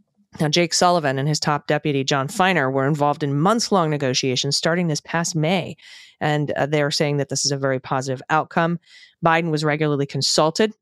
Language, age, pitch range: English, 30-49, 140-170 Hz